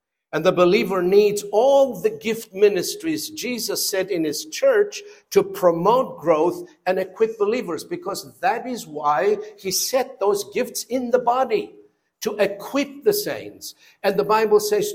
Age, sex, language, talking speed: 60-79, male, English, 155 wpm